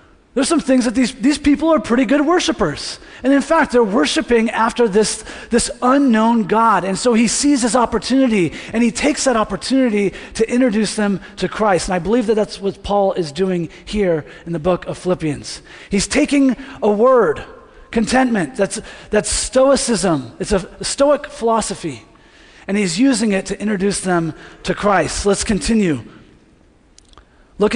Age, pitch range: 30-49, 195-250 Hz